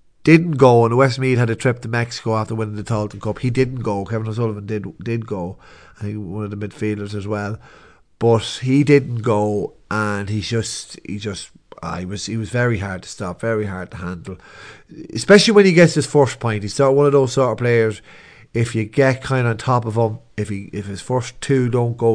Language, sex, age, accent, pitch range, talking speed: English, male, 30-49, Irish, 105-125 Hz, 220 wpm